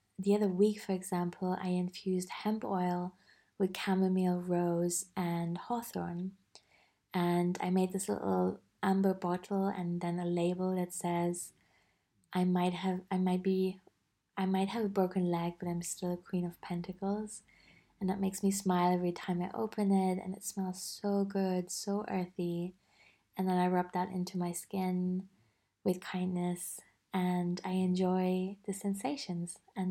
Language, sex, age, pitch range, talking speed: English, female, 20-39, 180-195 Hz, 160 wpm